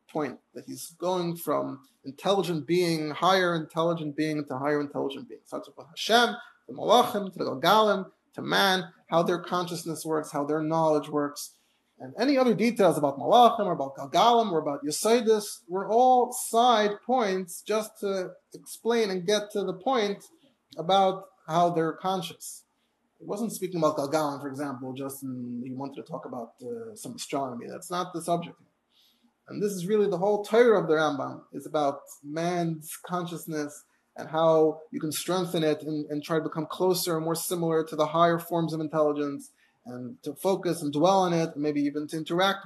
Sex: male